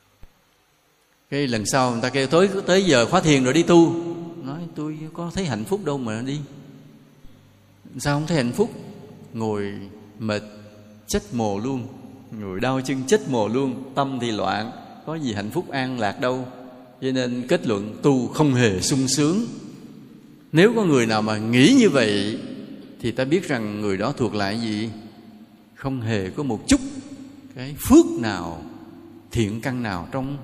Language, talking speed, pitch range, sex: Vietnamese, 170 wpm, 110-160 Hz, male